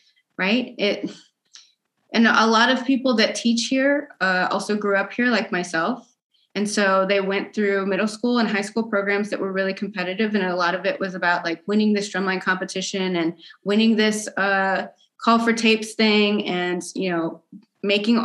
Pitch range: 185-220 Hz